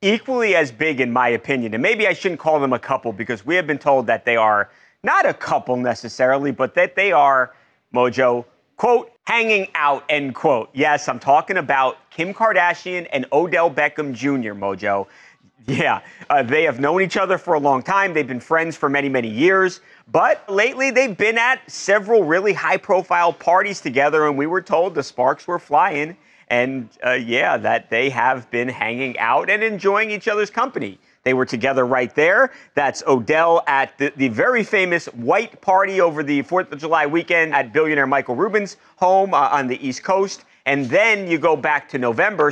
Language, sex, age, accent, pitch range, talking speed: English, male, 30-49, American, 130-185 Hz, 190 wpm